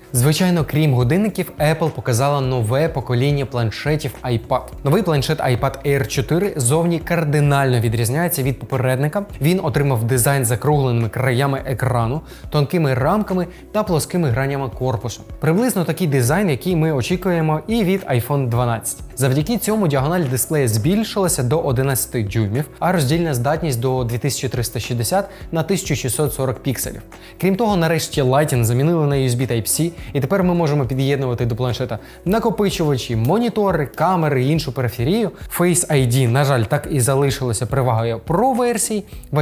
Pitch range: 125-165 Hz